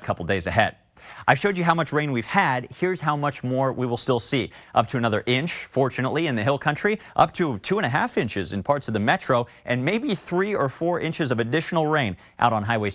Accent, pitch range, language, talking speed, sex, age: American, 110-160 Hz, English, 240 wpm, male, 30-49